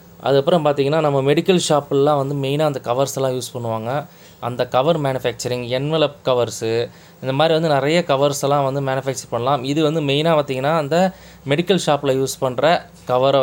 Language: Tamil